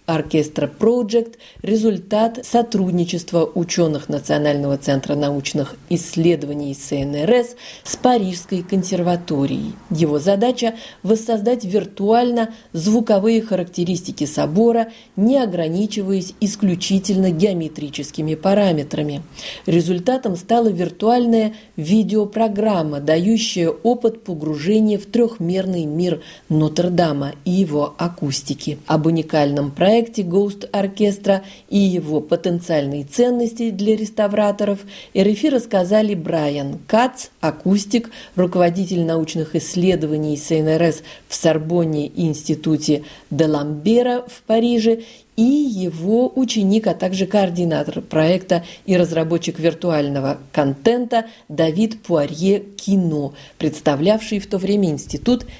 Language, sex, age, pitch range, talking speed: Russian, female, 40-59, 155-215 Hz, 95 wpm